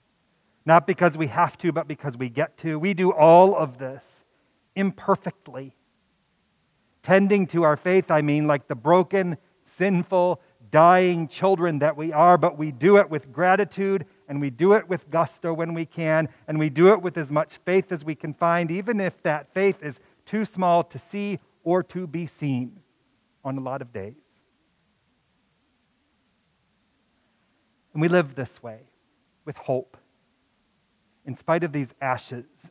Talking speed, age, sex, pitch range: 160 wpm, 40-59, male, 140-180 Hz